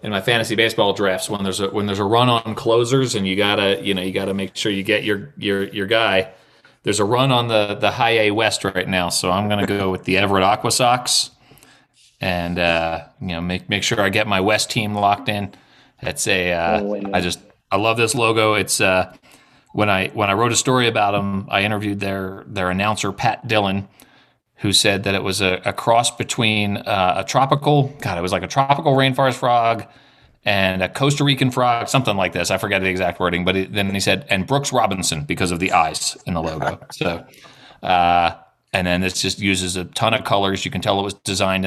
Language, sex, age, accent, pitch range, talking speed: English, male, 30-49, American, 95-115 Hz, 225 wpm